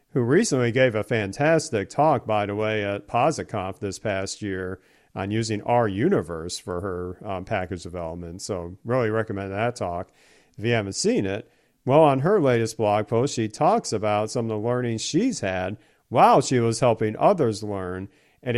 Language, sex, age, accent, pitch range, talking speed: English, male, 50-69, American, 105-130 Hz, 175 wpm